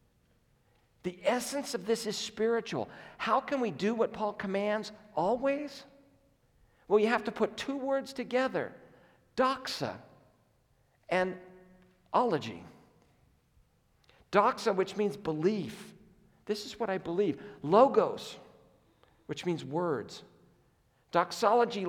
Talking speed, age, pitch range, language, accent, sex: 105 wpm, 50-69, 180-235 Hz, English, American, male